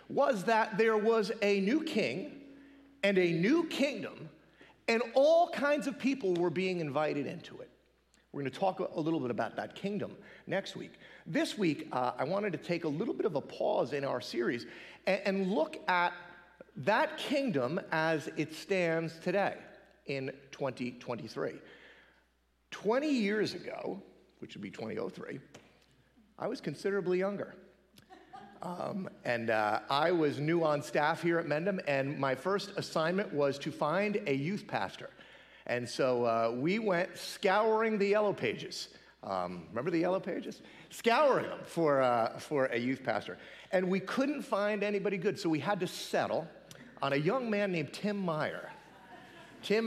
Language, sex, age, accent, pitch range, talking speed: English, male, 40-59, American, 150-205 Hz, 160 wpm